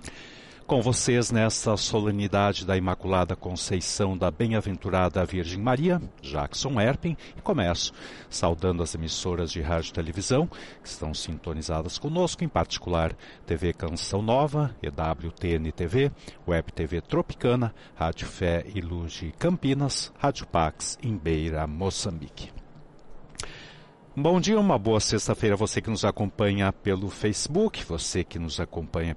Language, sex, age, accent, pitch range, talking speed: Portuguese, male, 60-79, Brazilian, 85-120 Hz, 130 wpm